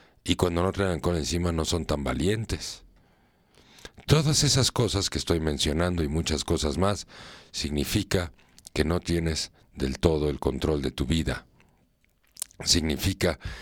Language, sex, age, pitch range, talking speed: Spanish, male, 50-69, 70-95 Hz, 140 wpm